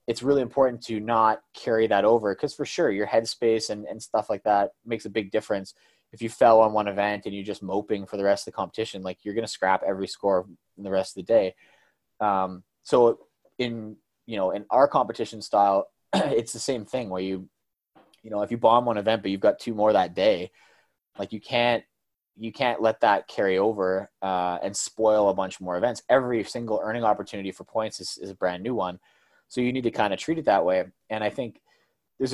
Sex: male